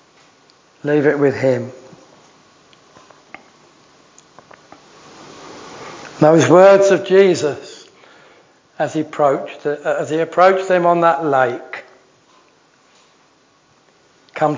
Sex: male